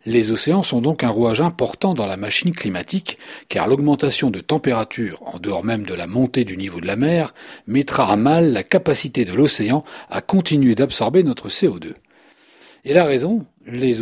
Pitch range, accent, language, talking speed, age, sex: 115-155 Hz, French, French, 180 wpm, 40-59, male